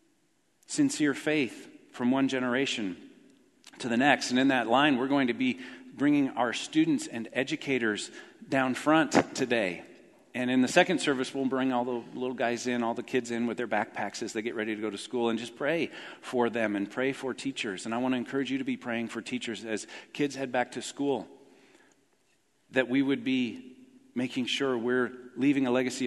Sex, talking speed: male, 200 wpm